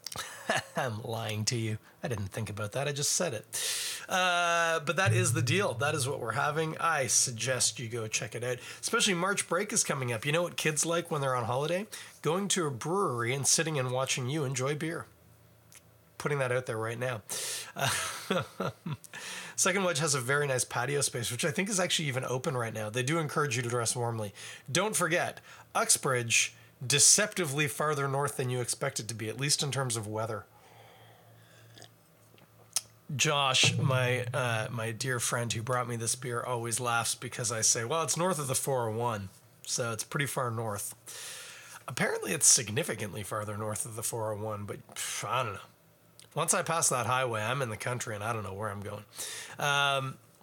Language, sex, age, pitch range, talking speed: English, male, 30-49, 115-150 Hz, 195 wpm